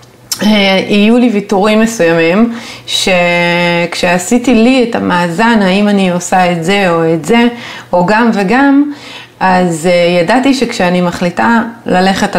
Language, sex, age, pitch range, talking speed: Hebrew, female, 30-49, 175-225 Hz, 115 wpm